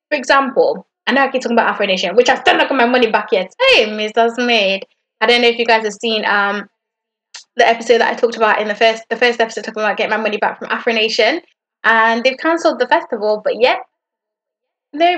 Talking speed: 230 wpm